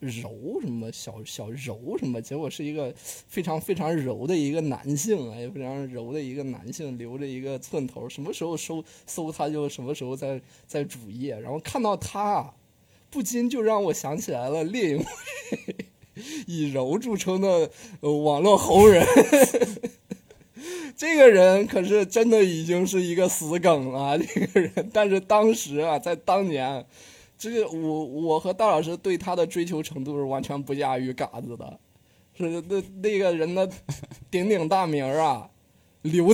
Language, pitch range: Chinese, 145-215 Hz